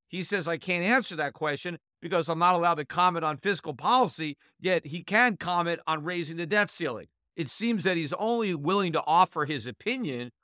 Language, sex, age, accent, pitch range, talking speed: English, male, 50-69, American, 140-175 Hz, 200 wpm